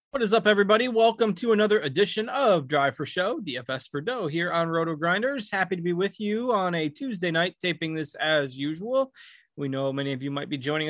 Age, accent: 20-39, American